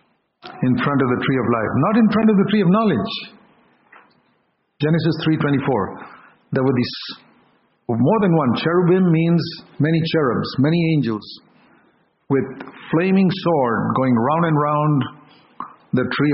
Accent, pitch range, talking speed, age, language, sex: Indian, 130-180 Hz, 140 wpm, 50-69, English, male